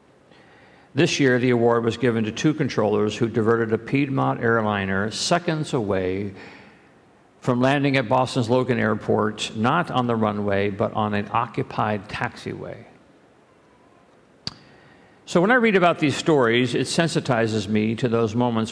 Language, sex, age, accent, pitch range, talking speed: English, male, 50-69, American, 115-140 Hz, 140 wpm